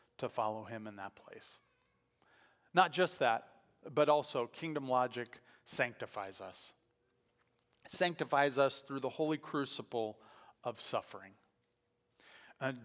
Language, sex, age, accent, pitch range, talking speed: English, male, 40-59, American, 135-180 Hz, 110 wpm